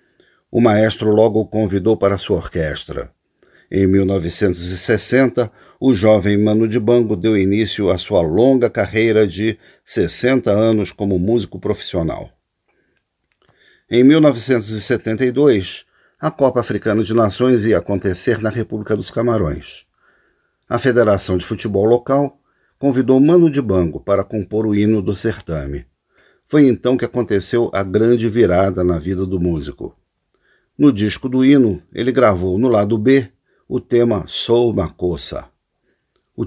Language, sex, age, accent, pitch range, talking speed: Portuguese, male, 50-69, Brazilian, 100-120 Hz, 130 wpm